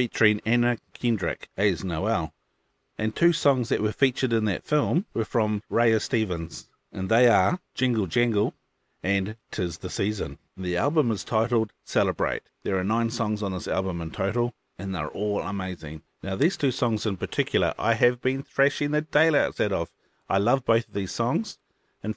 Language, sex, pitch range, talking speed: English, male, 95-120 Hz, 180 wpm